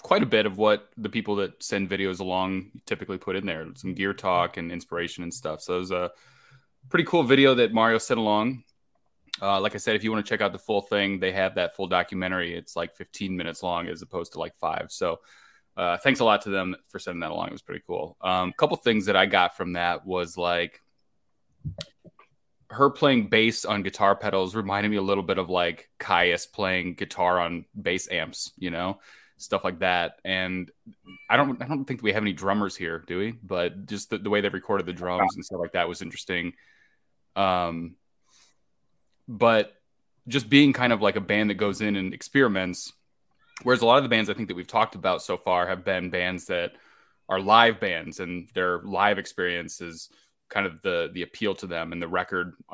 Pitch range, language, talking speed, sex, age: 90-105 Hz, English, 215 wpm, male, 20-39